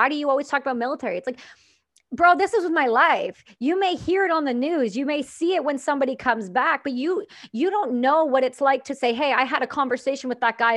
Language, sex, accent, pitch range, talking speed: English, female, American, 225-275 Hz, 265 wpm